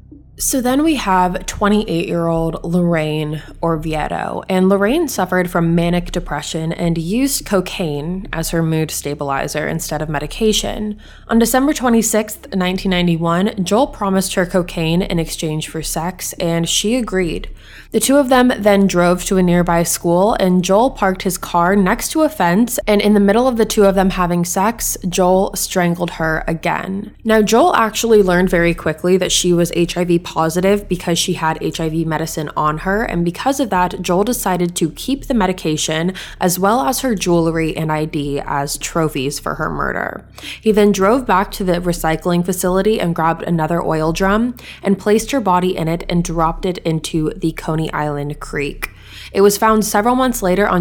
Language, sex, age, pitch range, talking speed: English, female, 20-39, 165-210 Hz, 175 wpm